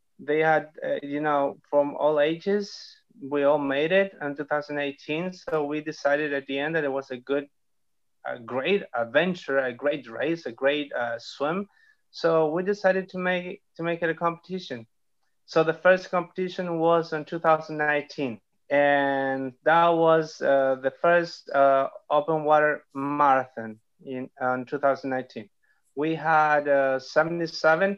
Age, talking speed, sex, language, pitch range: 30-49, 145 wpm, male, English, 130-165 Hz